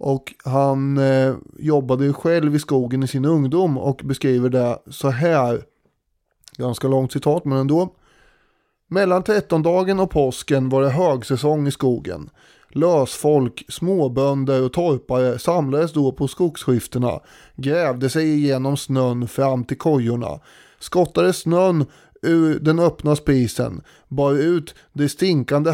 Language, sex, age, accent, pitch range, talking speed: Swedish, male, 30-49, native, 130-160 Hz, 130 wpm